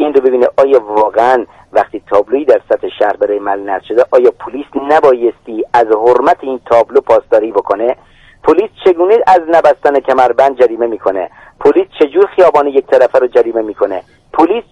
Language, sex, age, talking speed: Persian, male, 50-69, 155 wpm